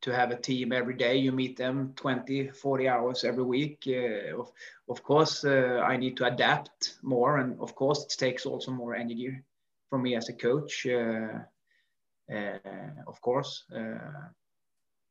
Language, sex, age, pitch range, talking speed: English, male, 30-49, 125-155 Hz, 165 wpm